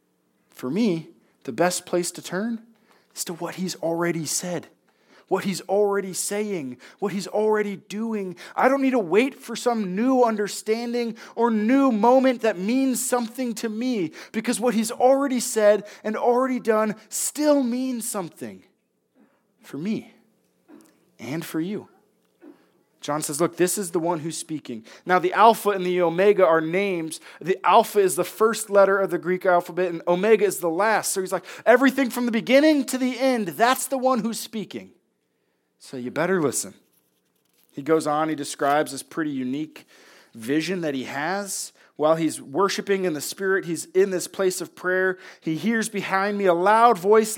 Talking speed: 170 wpm